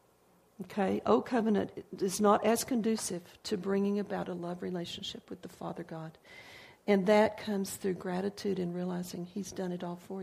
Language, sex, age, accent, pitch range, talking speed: English, female, 50-69, American, 185-220 Hz, 170 wpm